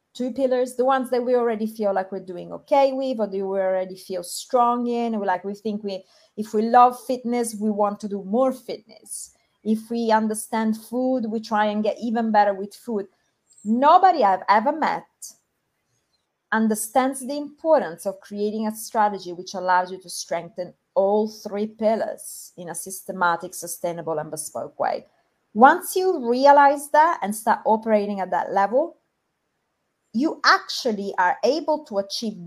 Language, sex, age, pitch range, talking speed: English, female, 30-49, 195-255 Hz, 165 wpm